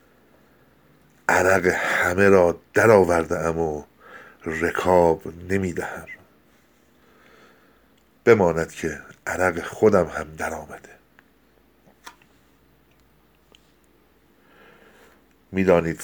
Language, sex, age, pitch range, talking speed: Persian, male, 60-79, 80-90 Hz, 55 wpm